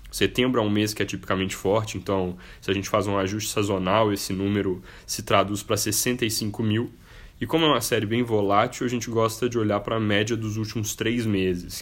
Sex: male